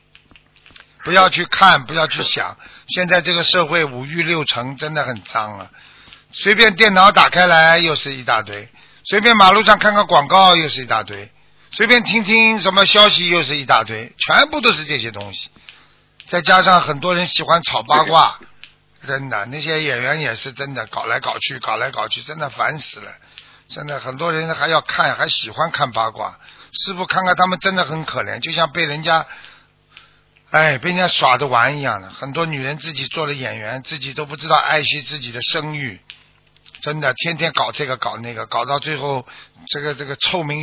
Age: 50-69